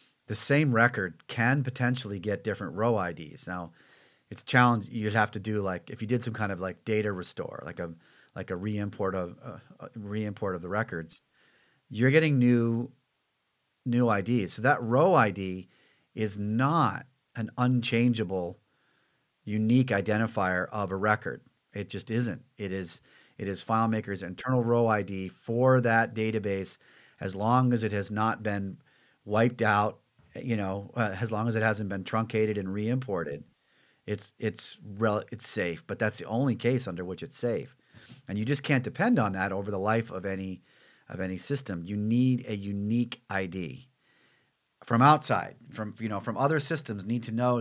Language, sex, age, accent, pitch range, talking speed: English, male, 40-59, American, 100-125 Hz, 175 wpm